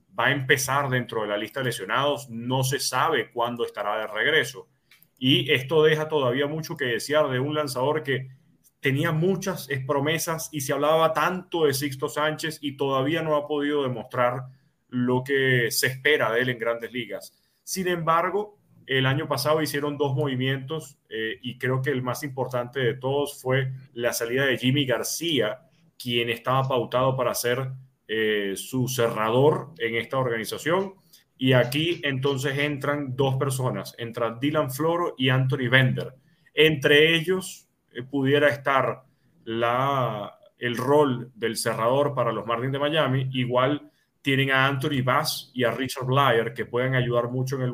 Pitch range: 125-150 Hz